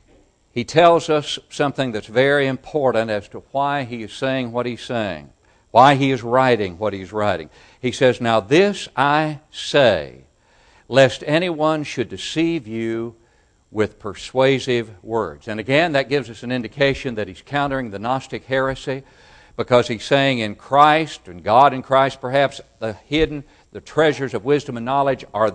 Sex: male